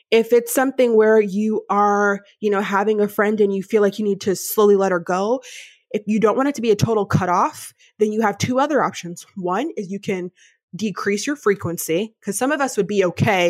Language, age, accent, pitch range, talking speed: English, 20-39, American, 195-235 Hz, 230 wpm